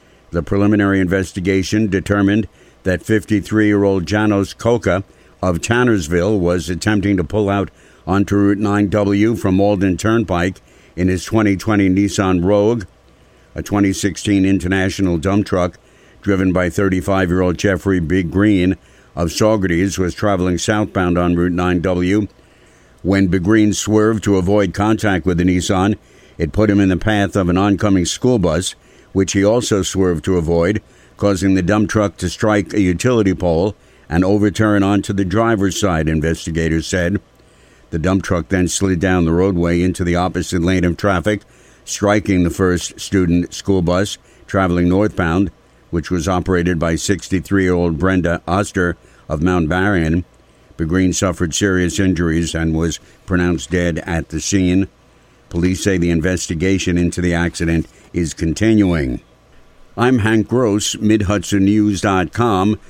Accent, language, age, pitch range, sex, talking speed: American, English, 60-79, 90-105 Hz, male, 140 wpm